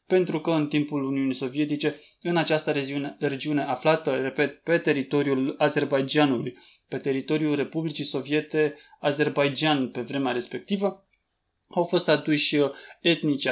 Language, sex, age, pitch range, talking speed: Romanian, male, 20-39, 135-155 Hz, 115 wpm